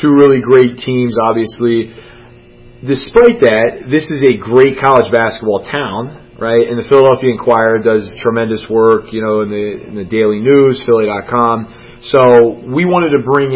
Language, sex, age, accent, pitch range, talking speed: English, male, 30-49, American, 115-130 Hz, 155 wpm